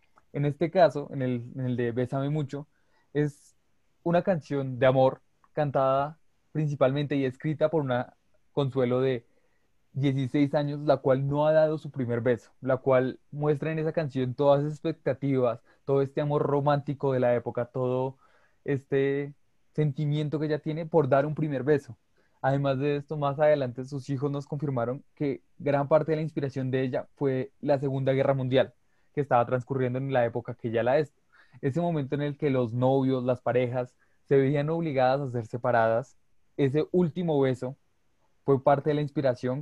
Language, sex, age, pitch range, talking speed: Spanish, male, 20-39, 125-150 Hz, 175 wpm